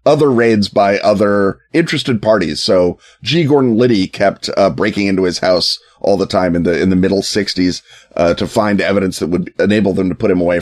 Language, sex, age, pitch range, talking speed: English, male, 30-49, 100-135 Hz, 210 wpm